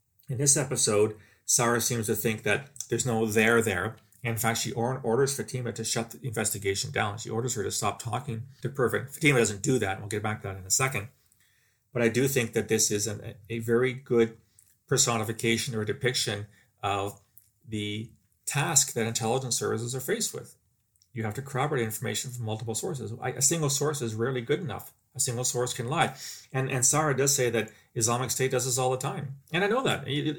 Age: 40-59